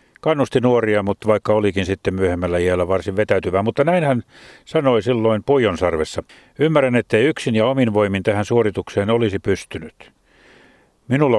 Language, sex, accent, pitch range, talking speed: Finnish, male, native, 95-115 Hz, 135 wpm